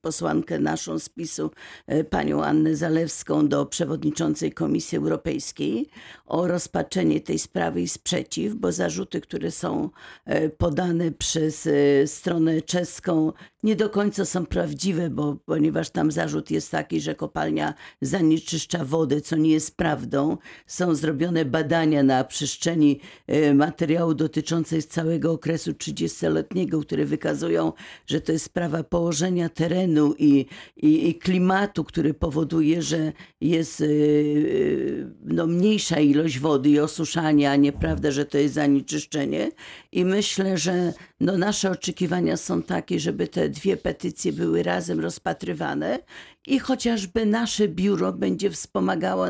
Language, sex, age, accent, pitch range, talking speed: Polish, female, 50-69, native, 150-180 Hz, 125 wpm